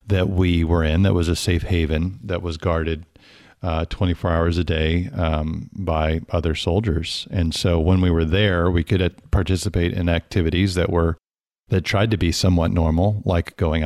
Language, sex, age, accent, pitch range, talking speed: English, male, 50-69, American, 85-100 Hz, 180 wpm